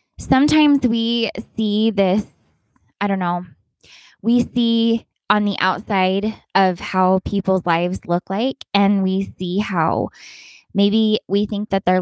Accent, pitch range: American, 185-230 Hz